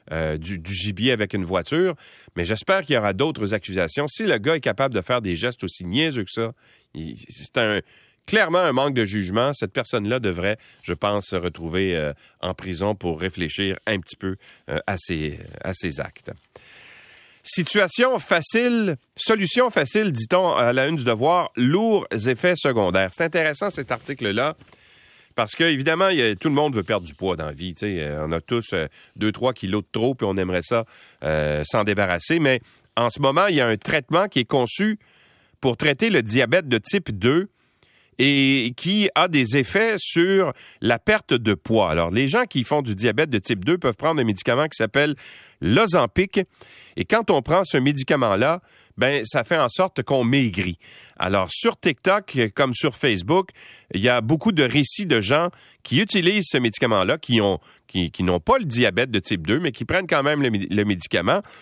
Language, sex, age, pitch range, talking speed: French, male, 40-59, 100-160 Hz, 190 wpm